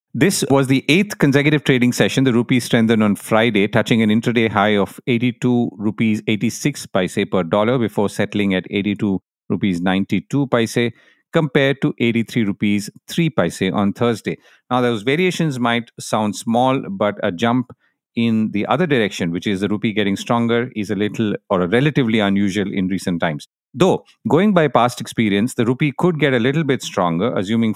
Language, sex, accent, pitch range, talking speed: English, male, Indian, 110-140 Hz, 175 wpm